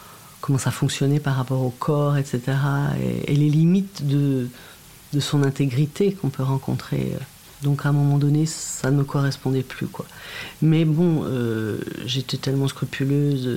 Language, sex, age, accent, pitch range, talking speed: French, female, 50-69, French, 125-150 Hz, 160 wpm